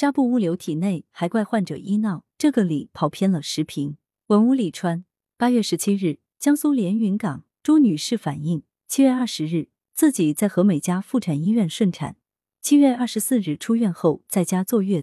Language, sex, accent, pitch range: Chinese, female, native, 160-225 Hz